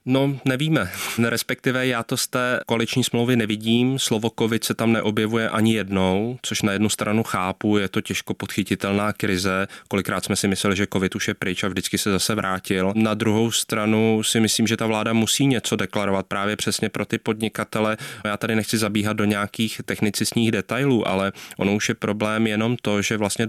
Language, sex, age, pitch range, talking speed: Czech, male, 20-39, 100-110 Hz, 190 wpm